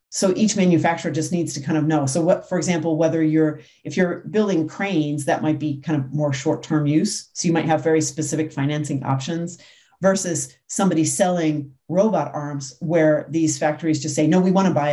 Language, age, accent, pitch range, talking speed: English, 40-59, American, 150-180 Hz, 200 wpm